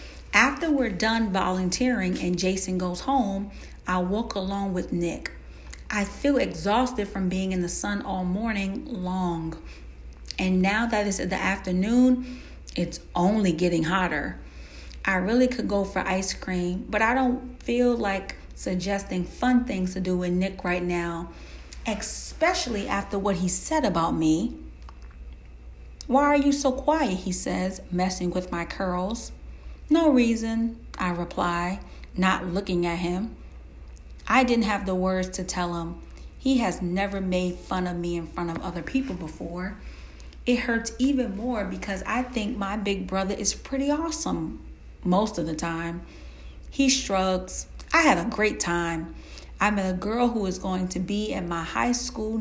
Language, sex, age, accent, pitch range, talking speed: English, female, 40-59, American, 175-220 Hz, 160 wpm